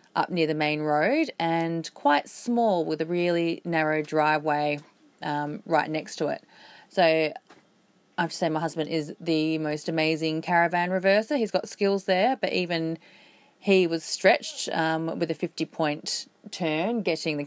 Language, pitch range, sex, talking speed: English, 155-205 Hz, female, 160 wpm